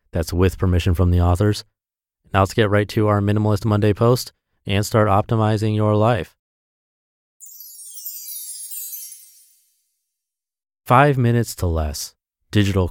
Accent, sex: American, male